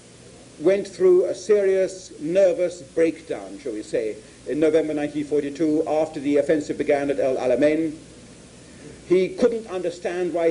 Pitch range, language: 160-190 Hz, English